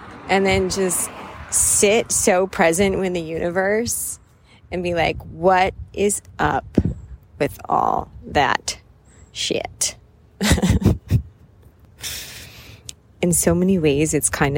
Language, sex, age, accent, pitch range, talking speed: English, female, 30-49, American, 120-175 Hz, 105 wpm